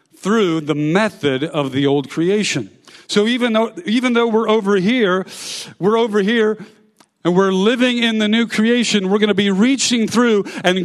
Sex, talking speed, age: male, 170 wpm, 50-69